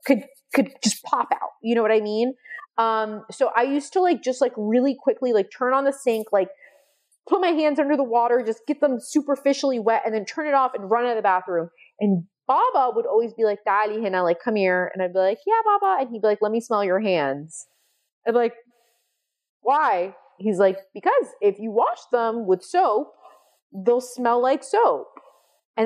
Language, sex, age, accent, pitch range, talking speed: English, female, 30-49, American, 210-290 Hz, 215 wpm